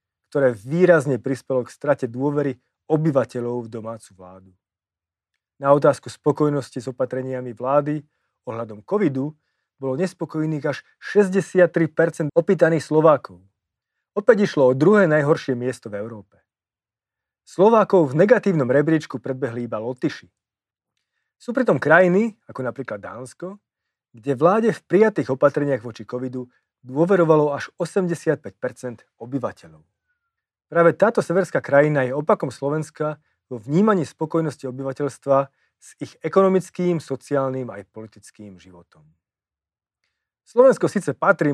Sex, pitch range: male, 120-165 Hz